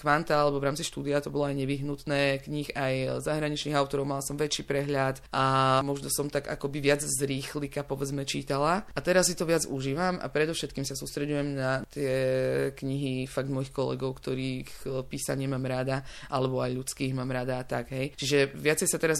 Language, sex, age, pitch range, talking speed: Slovak, female, 20-39, 140-155 Hz, 180 wpm